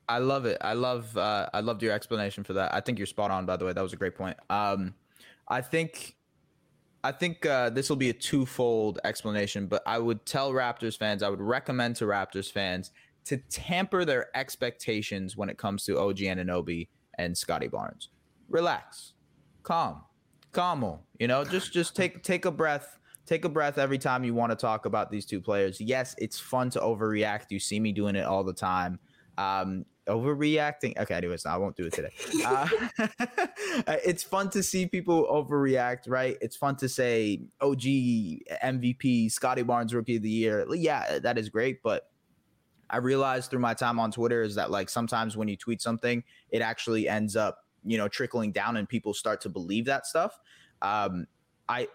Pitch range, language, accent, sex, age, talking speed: 105-135 Hz, English, American, male, 20-39, 190 wpm